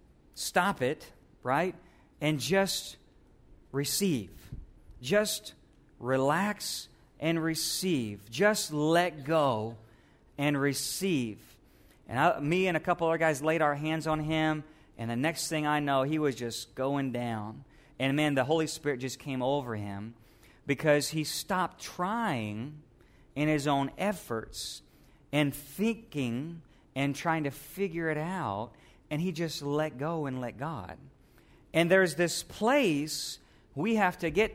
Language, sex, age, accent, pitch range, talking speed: English, male, 40-59, American, 130-170 Hz, 135 wpm